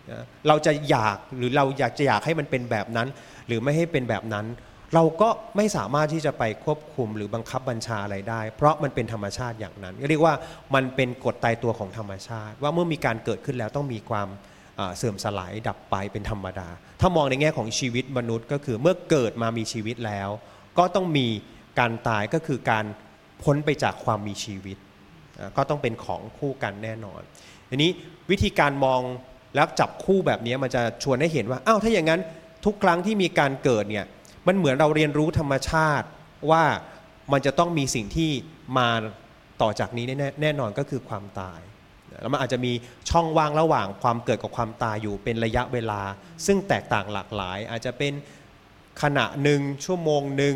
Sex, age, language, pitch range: male, 30-49, Thai, 110-150 Hz